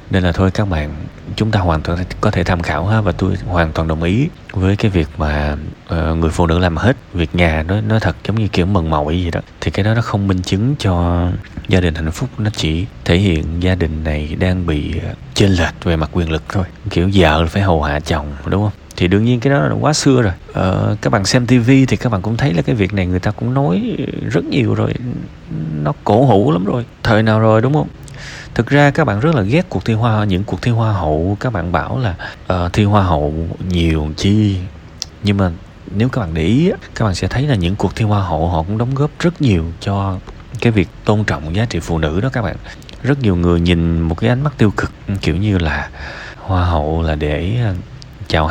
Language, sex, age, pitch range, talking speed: Vietnamese, male, 20-39, 85-115 Hz, 245 wpm